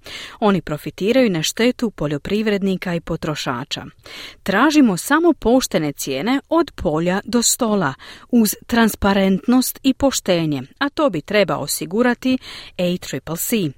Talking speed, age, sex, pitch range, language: 110 wpm, 40-59, female, 160-255 Hz, Croatian